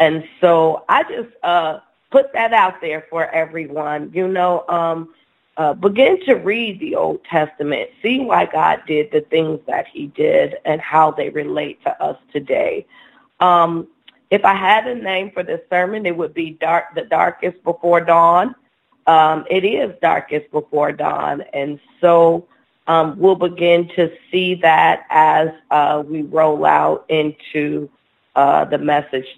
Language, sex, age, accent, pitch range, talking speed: English, female, 40-59, American, 160-245 Hz, 155 wpm